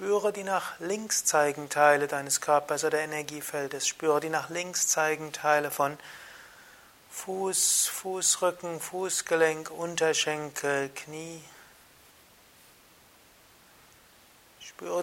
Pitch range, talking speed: 150-170 Hz, 90 wpm